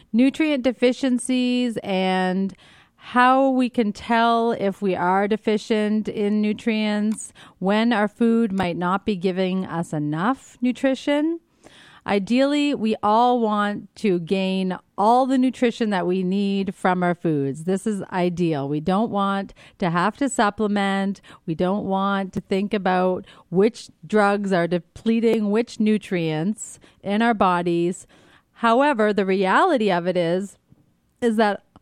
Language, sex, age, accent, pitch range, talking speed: English, female, 30-49, American, 185-230 Hz, 135 wpm